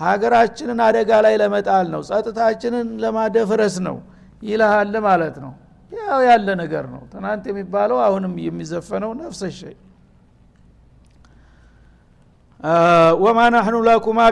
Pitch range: 190-220 Hz